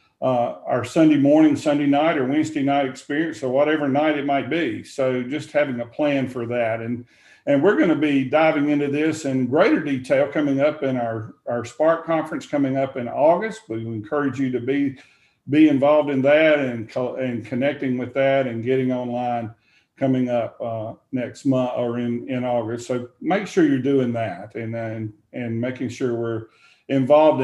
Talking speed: 190 wpm